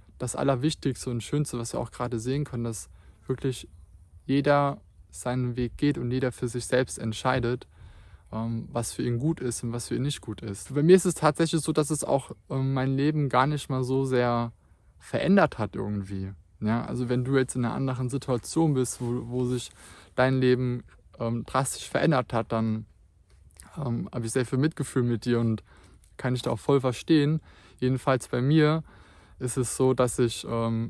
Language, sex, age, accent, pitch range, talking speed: German, male, 20-39, German, 110-130 Hz, 185 wpm